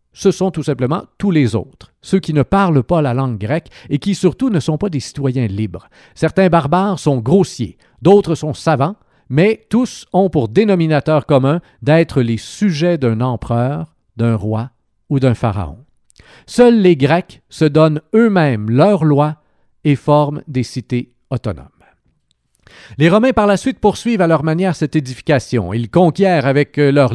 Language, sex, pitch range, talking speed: French, male, 135-185 Hz, 165 wpm